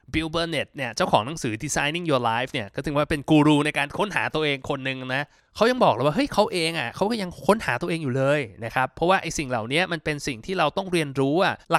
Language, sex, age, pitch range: Thai, male, 20-39, 120-165 Hz